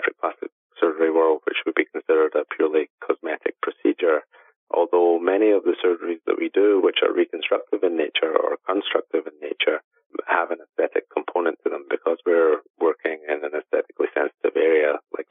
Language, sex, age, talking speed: English, male, 30-49, 170 wpm